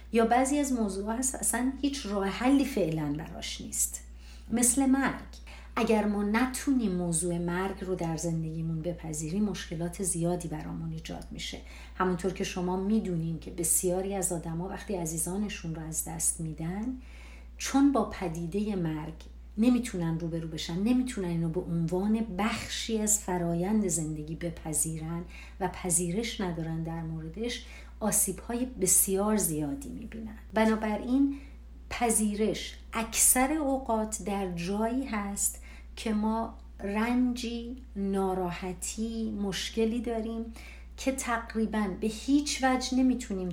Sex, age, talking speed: female, 50-69, 120 wpm